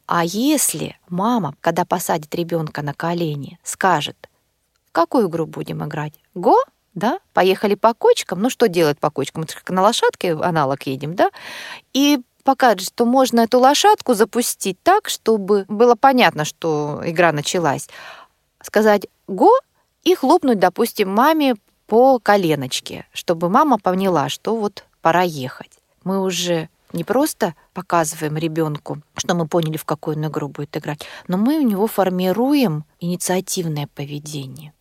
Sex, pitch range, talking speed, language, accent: female, 160-220 Hz, 140 wpm, Russian, native